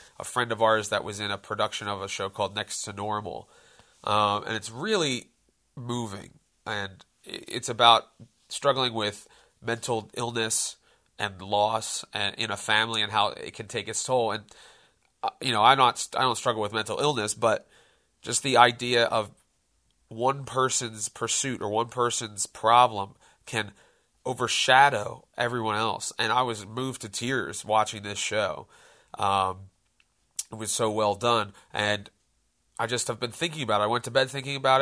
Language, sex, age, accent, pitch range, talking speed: English, male, 30-49, American, 105-125 Hz, 165 wpm